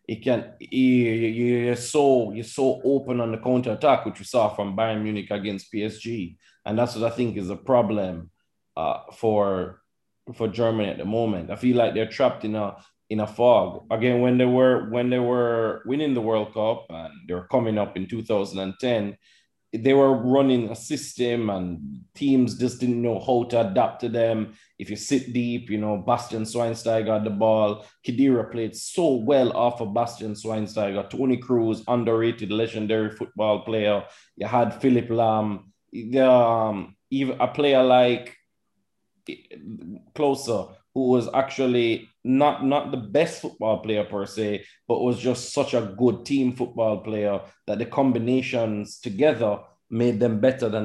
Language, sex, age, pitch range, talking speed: English, male, 20-39, 105-125 Hz, 170 wpm